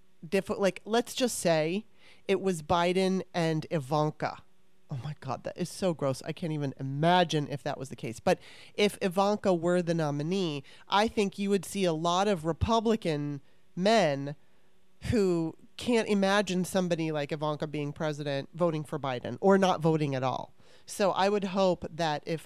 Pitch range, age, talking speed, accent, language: 150-195 Hz, 30-49, 170 wpm, American, English